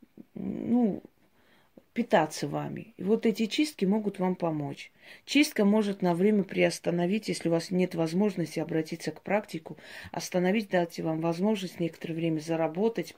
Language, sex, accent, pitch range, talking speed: Russian, female, native, 165-210 Hz, 135 wpm